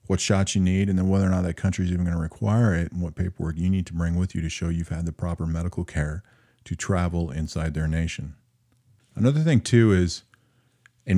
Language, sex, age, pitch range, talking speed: English, male, 40-59, 80-105 Hz, 235 wpm